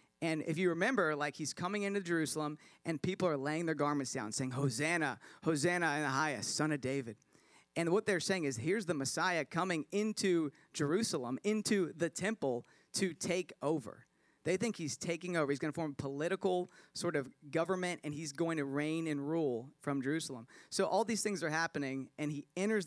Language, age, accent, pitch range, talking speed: English, 40-59, American, 140-175 Hz, 190 wpm